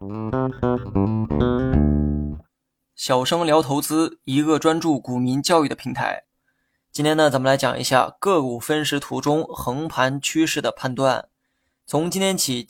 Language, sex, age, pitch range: Chinese, male, 20-39, 130-155 Hz